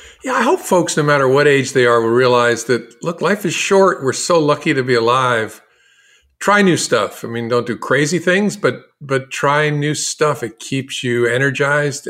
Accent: American